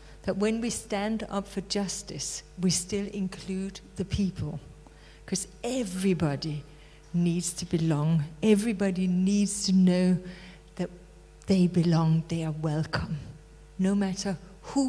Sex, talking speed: female, 120 wpm